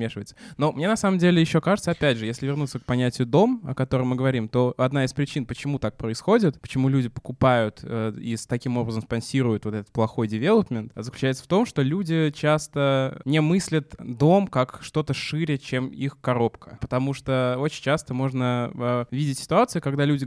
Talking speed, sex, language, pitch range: 180 wpm, male, Russian, 120-145 Hz